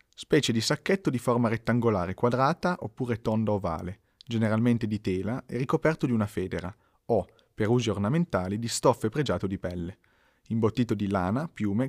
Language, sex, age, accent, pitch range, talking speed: Italian, male, 30-49, native, 100-130 Hz, 155 wpm